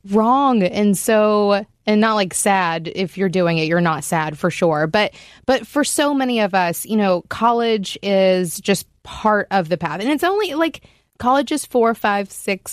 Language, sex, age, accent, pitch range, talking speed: English, female, 20-39, American, 175-230 Hz, 195 wpm